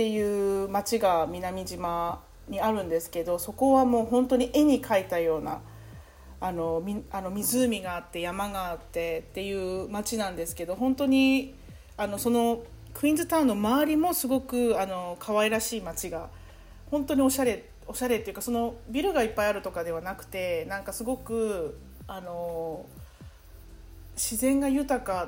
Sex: female